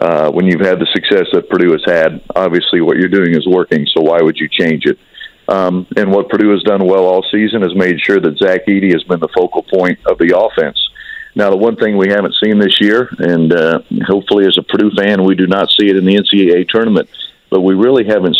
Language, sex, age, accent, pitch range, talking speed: English, male, 50-69, American, 90-105 Hz, 240 wpm